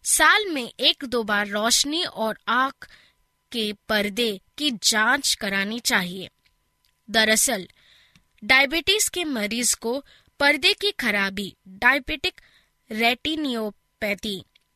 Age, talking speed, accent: 20-39, 100 wpm, native